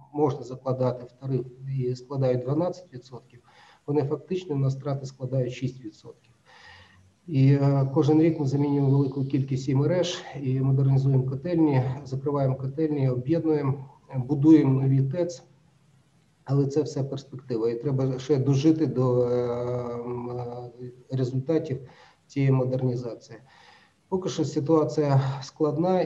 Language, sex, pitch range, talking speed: Ukrainian, male, 125-145 Hz, 110 wpm